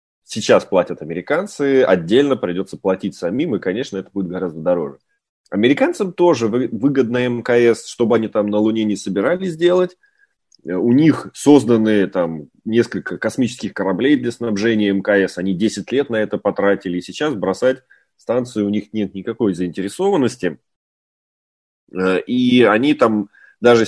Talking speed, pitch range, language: 135 wpm, 95-120 Hz, Russian